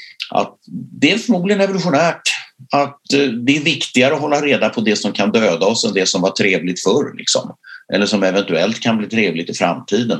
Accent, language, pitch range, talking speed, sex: Swedish, English, 95-140 Hz, 195 wpm, male